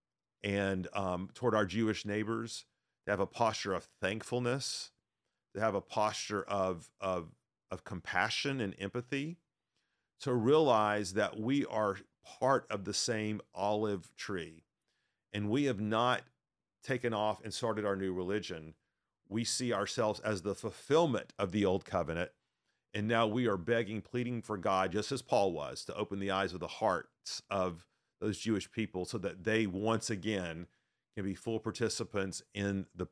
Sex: male